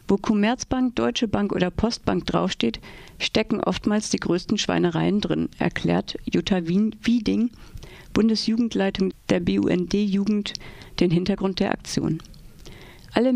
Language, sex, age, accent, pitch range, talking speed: German, female, 50-69, German, 190-235 Hz, 110 wpm